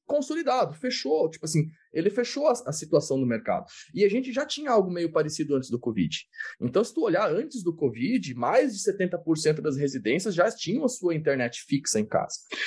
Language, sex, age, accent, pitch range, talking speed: Portuguese, male, 20-39, Brazilian, 160-230 Hz, 200 wpm